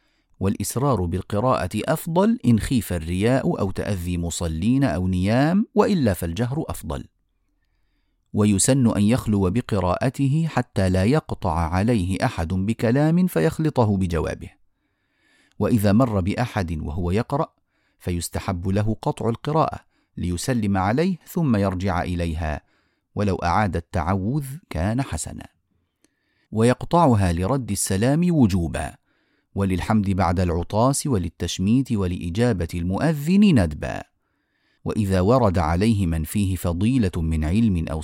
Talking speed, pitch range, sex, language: 105 wpm, 90-125 Hz, male, Arabic